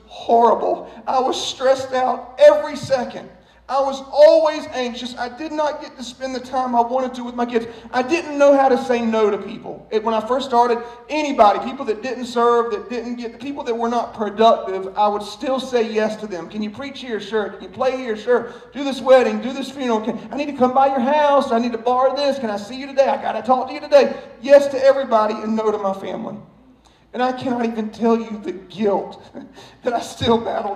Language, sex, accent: English, male, American